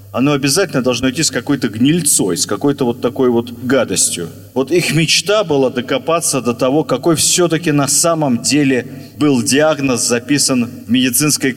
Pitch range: 115-150 Hz